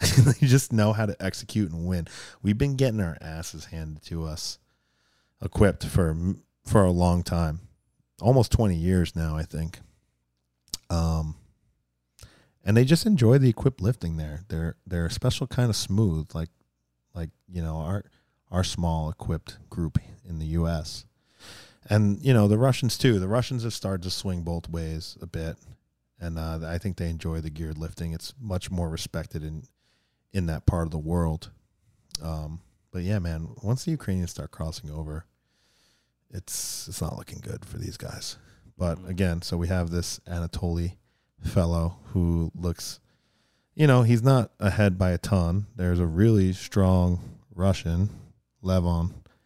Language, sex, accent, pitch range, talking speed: English, male, American, 80-105 Hz, 165 wpm